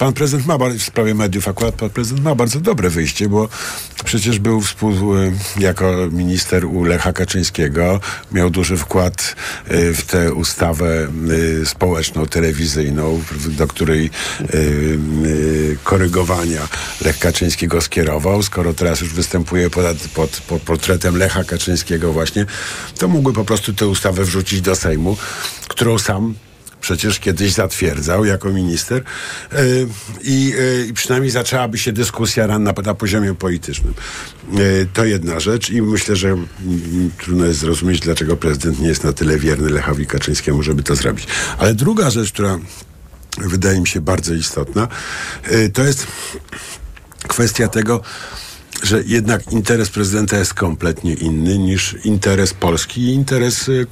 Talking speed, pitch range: 130 wpm, 85-110 Hz